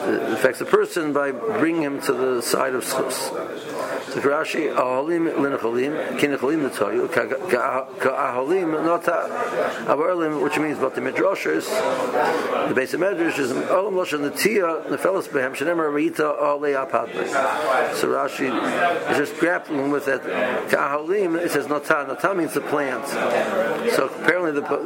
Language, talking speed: English, 140 wpm